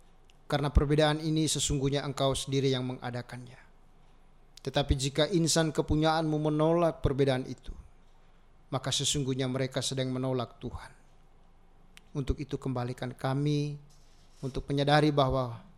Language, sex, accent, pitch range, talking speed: Indonesian, male, native, 130-150 Hz, 105 wpm